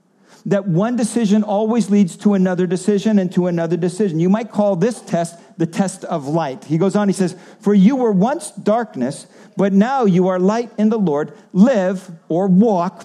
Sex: male